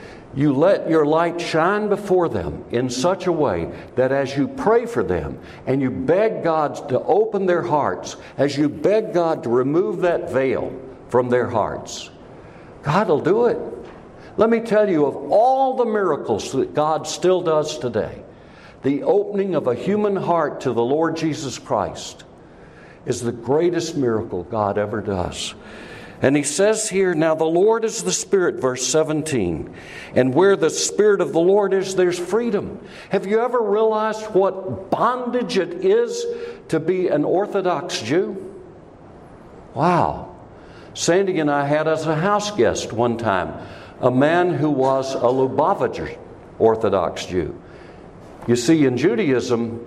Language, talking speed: English, 155 wpm